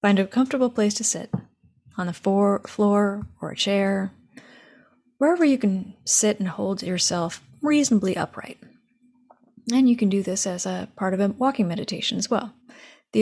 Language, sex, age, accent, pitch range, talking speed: English, female, 30-49, American, 190-245 Hz, 165 wpm